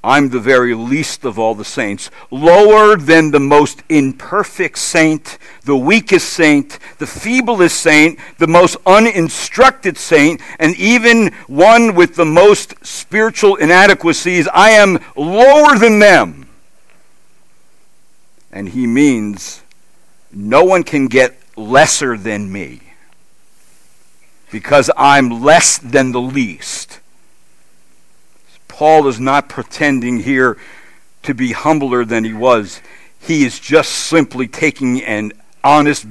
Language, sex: English, male